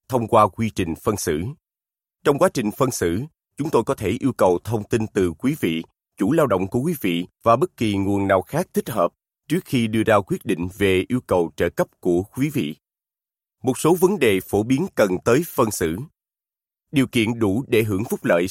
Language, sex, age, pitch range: Vietnamese, male, 30-49, 95-125 Hz